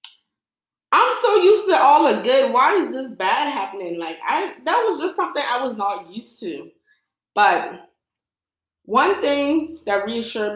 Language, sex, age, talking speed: English, female, 20-39, 150 wpm